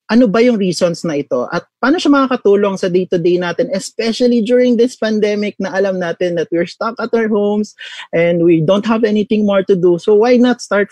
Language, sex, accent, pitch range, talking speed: Filipino, male, native, 155-225 Hz, 210 wpm